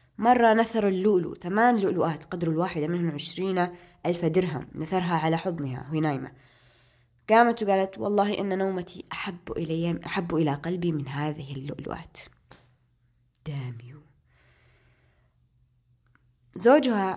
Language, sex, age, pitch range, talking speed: Arabic, female, 20-39, 150-195 Hz, 110 wpm